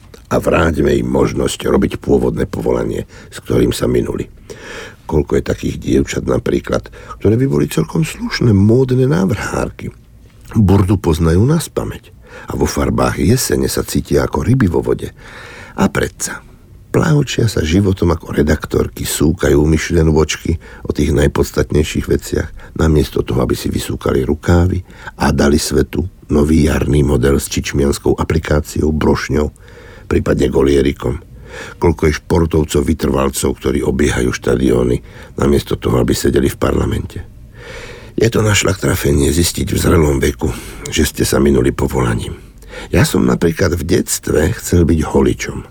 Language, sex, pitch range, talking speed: Slovak, male, 70-95 Hz, 135 wpm